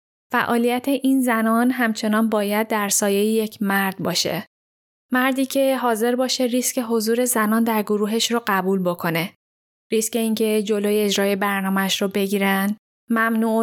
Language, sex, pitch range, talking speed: Persian, female, 195-235 Hz, 130 wpm